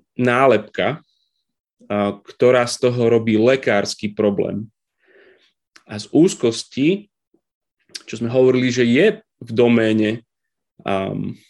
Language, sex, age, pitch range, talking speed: Slovak, male, 30-49, 105-130 Hz, 95 wpm